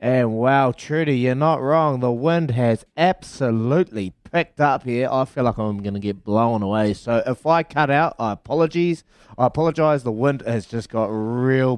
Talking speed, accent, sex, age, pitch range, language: 185 wpm, Australian, male, 20-39, 115-150 Hz, English